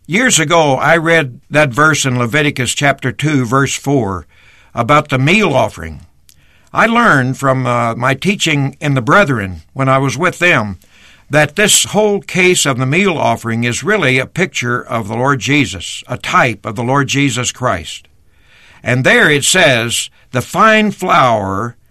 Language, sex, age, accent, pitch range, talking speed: English, male, 60-79, American, 120-160 Hz, 165 wpm